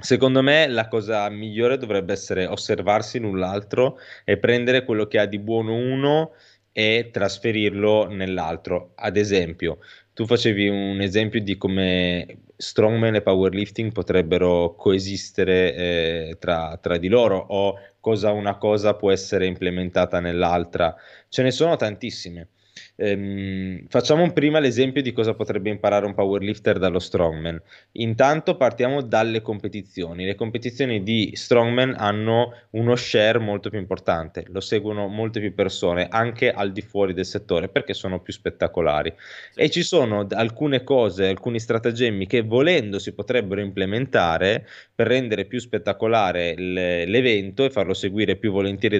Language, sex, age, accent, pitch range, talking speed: Italian, male, 20-39, native, 95-120 Hz, 140 wpm